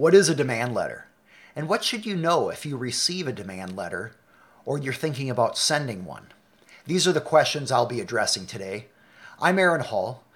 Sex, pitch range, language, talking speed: male, 125-165 Hz, English, 190 wpm